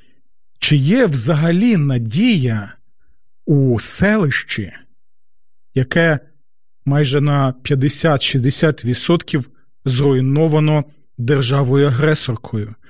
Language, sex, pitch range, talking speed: Ukrainian, male, 130-180 Hz, 55 wpm